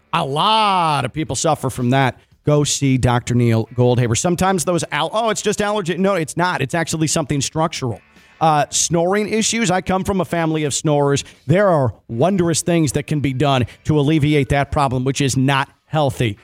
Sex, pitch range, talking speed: male, 120-180 Hz, 185 wpm